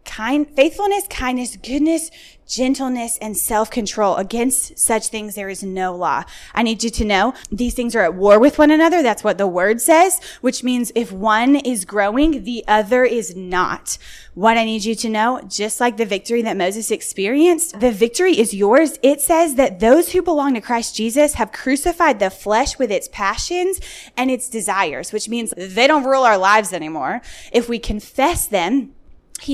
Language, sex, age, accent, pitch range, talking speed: English, female, 20-39, American, 200-265 Hz, 185 wpm